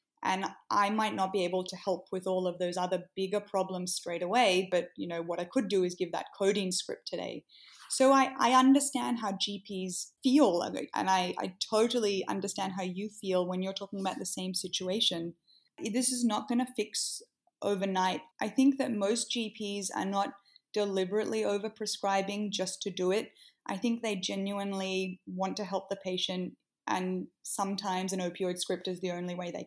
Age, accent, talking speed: 20-39, Australian, 185 wpm